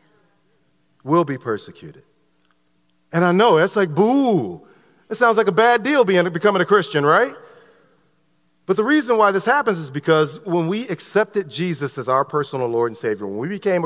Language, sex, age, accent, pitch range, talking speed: English, male, 40-59, American, 135-190 Hz, 180 wpm